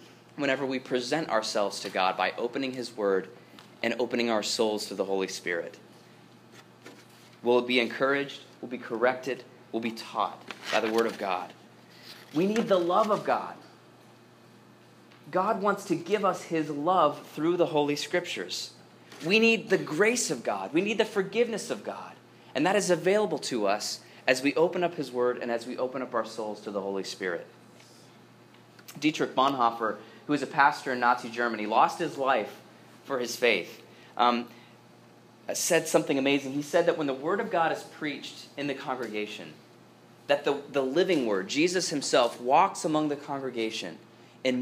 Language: English